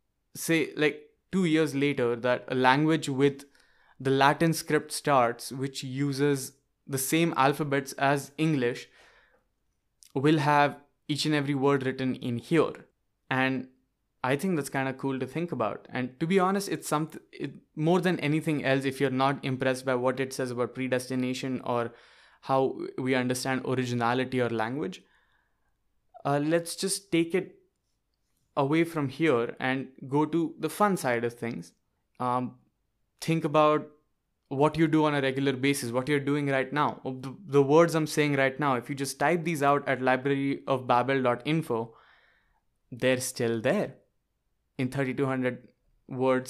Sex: male